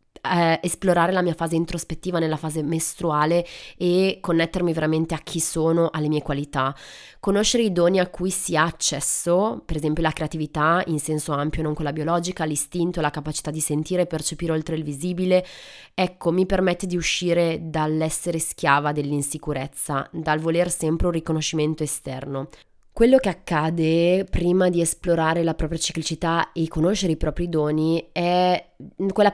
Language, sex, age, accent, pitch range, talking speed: Italian, female, 20-39, native, 155-180 Hz, 155 wpm